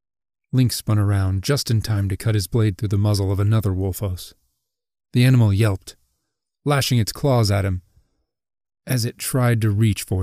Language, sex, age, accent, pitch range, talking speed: English, male, 30-49, American, 95-115 Hz, 175 wpm